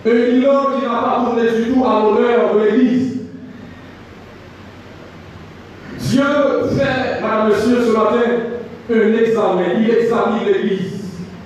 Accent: French